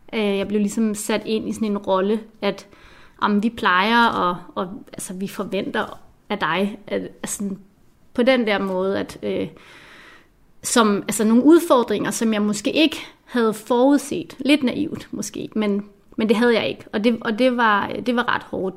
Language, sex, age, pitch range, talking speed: Danish, female, 30-49, 205-250 Hz, 180 wpm